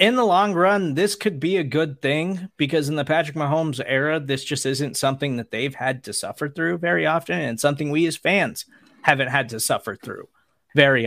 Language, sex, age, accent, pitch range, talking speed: English, male, 30-49, American, 120-160 Hz, 210 wpm